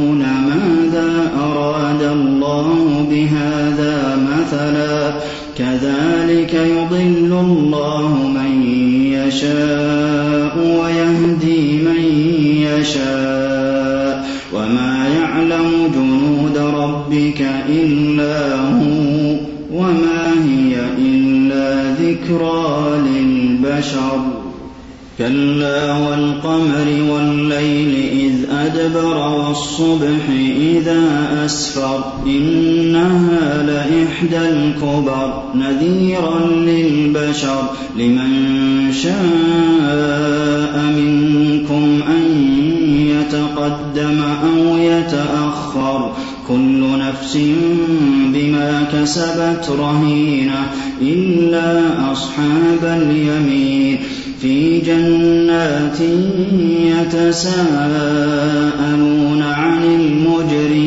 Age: 30-49